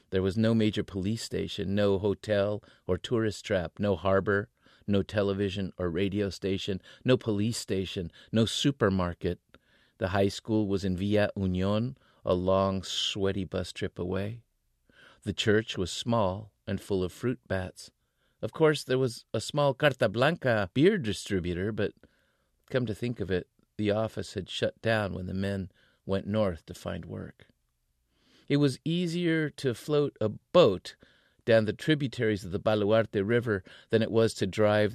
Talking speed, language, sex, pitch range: 160 wpm, English, male, 95-115 Hz